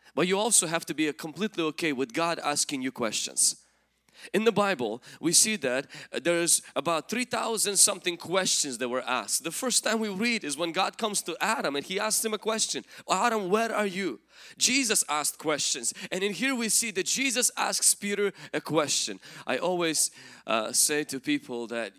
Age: 20-39